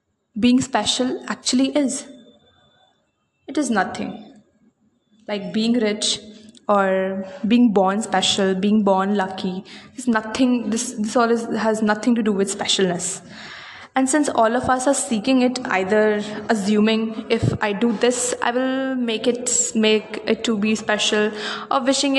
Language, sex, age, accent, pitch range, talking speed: English, female, 20-39, Indian, 215-255 Hz, 145 wpm